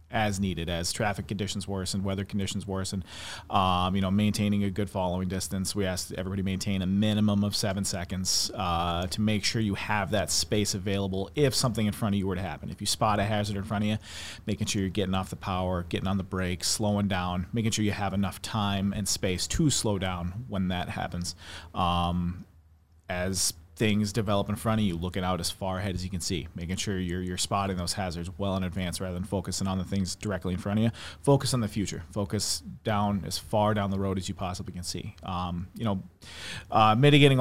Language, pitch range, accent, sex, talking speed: English, 90-105 Hz, American, male, 225 wpm